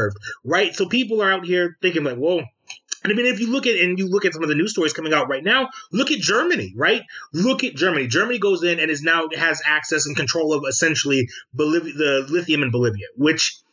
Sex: male